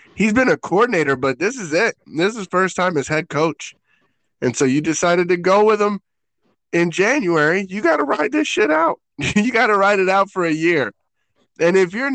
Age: 20-39